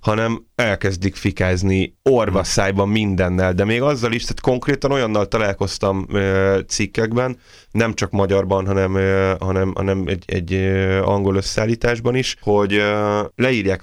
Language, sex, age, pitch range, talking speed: Hungarian, male, 30-49, 95-105 Hz, 115 wpm